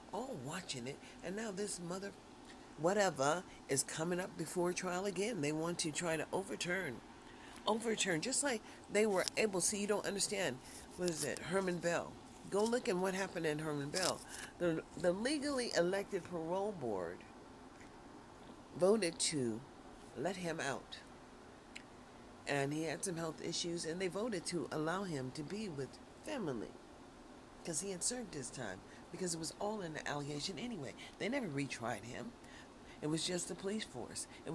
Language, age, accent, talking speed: English, 40-59, American, 165 wpm